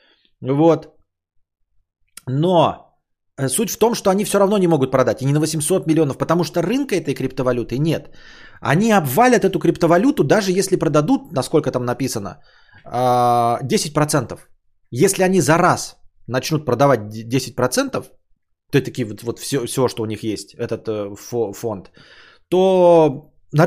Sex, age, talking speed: male, 30-49, 135 wpm